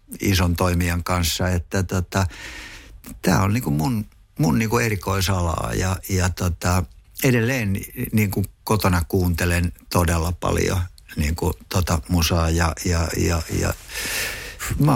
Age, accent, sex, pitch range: 60-79, native, male, 85-100 Hz